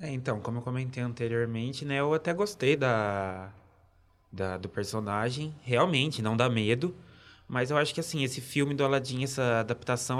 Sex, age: male, 20-39